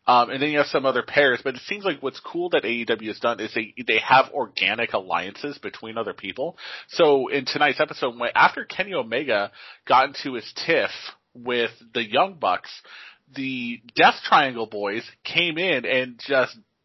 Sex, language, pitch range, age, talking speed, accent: male, English, 120-170 Hz, 30-49, 180 wpm, American